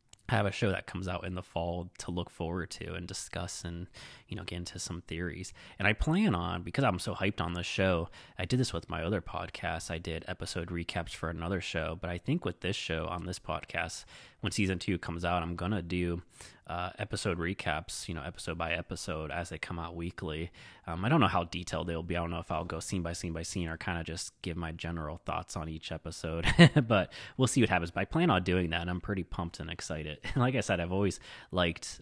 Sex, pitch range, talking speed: male, 85-105 Hz, 245 wpm